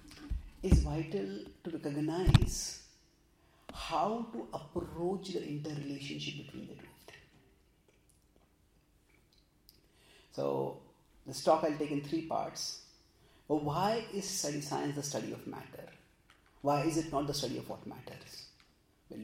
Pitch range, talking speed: 130-180 Hz, 120 wpm